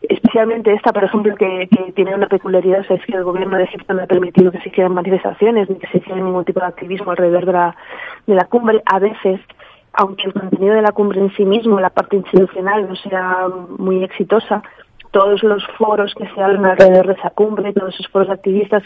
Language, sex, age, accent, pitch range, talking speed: Spanish, female, 20-39, Spanish, 190-215 Hz, 220 wpm